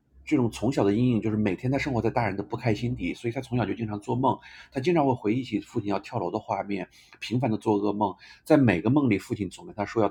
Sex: male